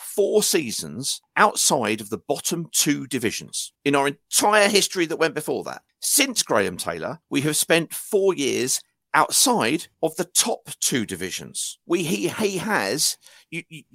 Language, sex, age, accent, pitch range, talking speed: English, male, 50-69, British, 110-175 Hz, 150 wpm